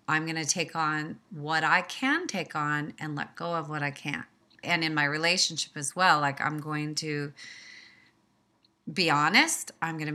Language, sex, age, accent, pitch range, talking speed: English, female, 30-49, American, 150-170 Hz, 190 wpm